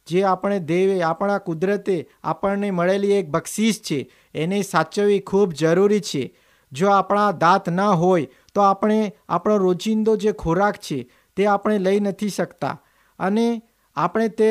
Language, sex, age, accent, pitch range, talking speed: Hindi, male, 50-69, native, 175-210 Hz, 135 wpm